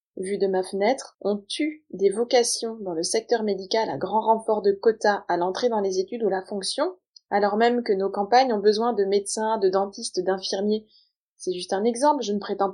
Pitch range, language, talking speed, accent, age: 190-235 Hz, French, 205 wpm, French, 20-39